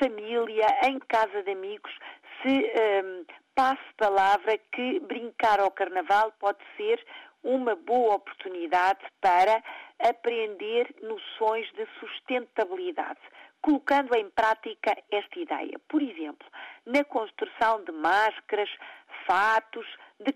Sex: female